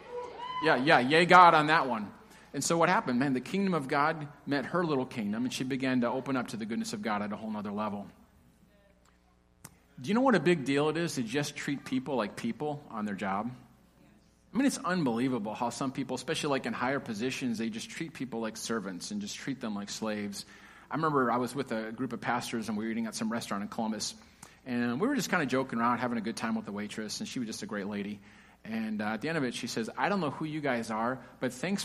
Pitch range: 115-165 Hz